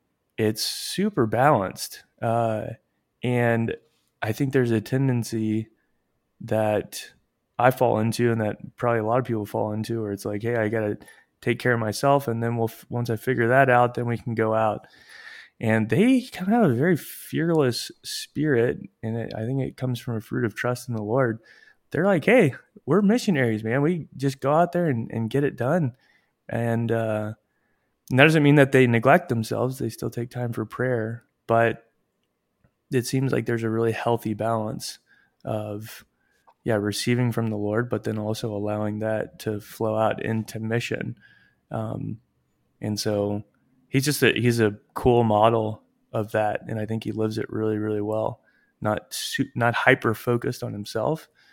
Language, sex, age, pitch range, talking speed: English, male, 20-39, 110-125 Hz, 180 wpm